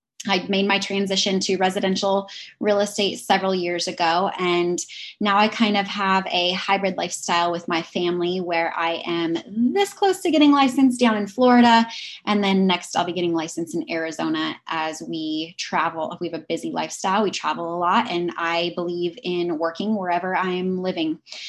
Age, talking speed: 20-39, 175 wpm